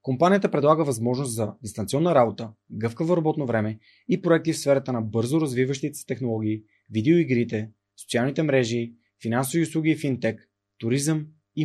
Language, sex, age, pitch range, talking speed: Bulgarian, male, 30-49, 115-160 Hz, 140 wpm